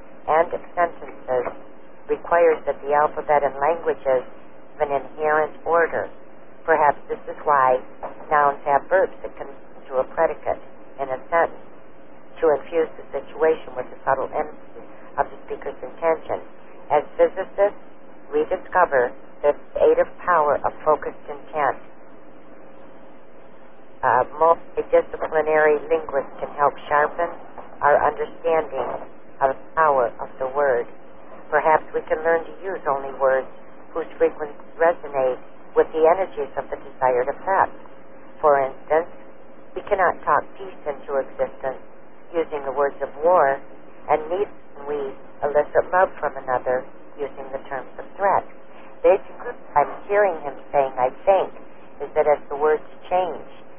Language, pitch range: English, 135-170 Hz